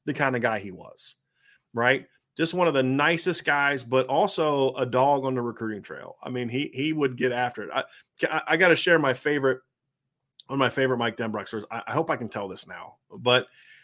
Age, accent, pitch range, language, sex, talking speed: 30-49, American, 120-150 Hz, English, male, 220 wpm